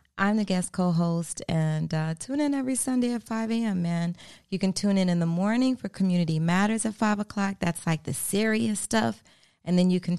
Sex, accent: female, American